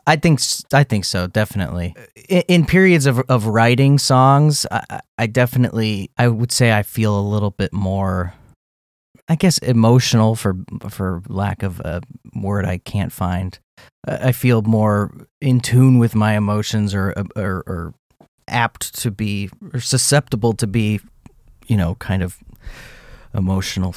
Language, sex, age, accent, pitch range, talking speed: English, male, 30-49, American, 100-125 Hz, 155 wpm